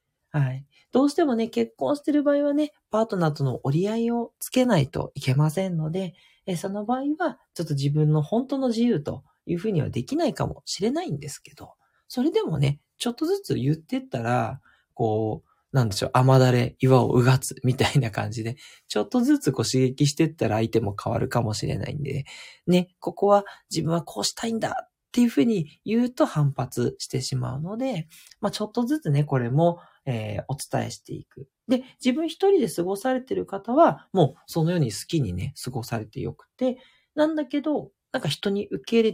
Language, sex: Japanese, male